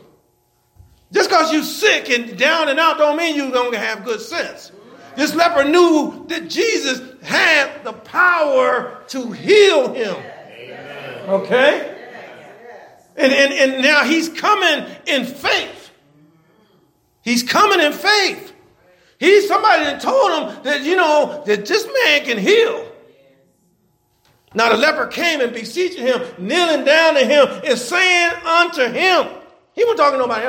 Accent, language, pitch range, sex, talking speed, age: American, English, 220-335 Hz, male, 145 wpm, 50-69